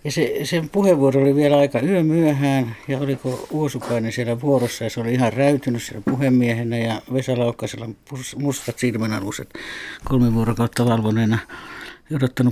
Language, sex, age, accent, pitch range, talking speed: Finnish, male, 60-79, native, 115-145 Hz, 130 wpm